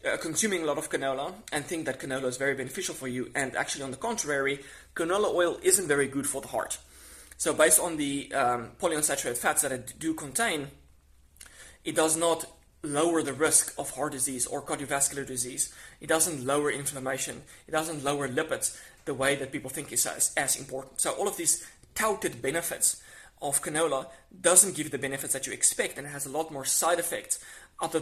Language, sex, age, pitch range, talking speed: English, male, 20-39, 135-165 Hz, 195 wpm